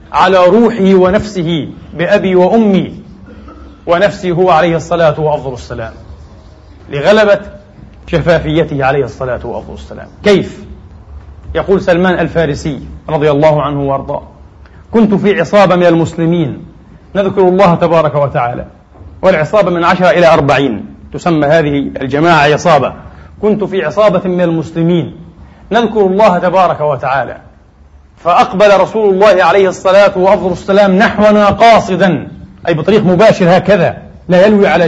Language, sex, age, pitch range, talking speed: Arabic, male, 40-59, 145-195 Hz, 110 wpm